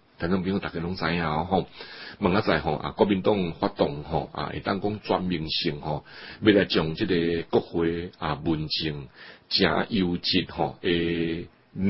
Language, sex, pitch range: Chinese, male, 80-105 Hz